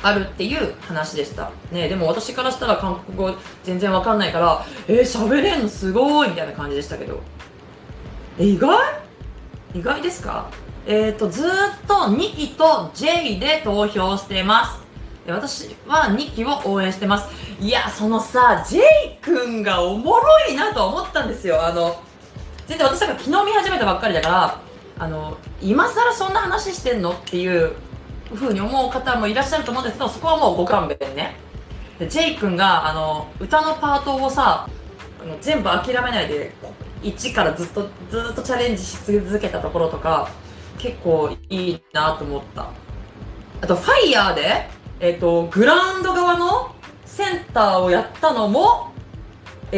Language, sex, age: Japanese, female, 20-39